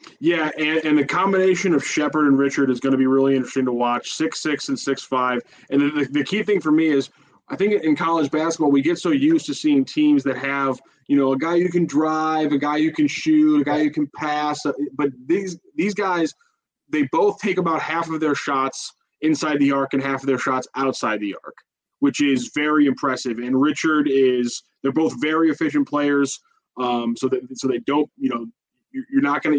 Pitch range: 135-155 Hz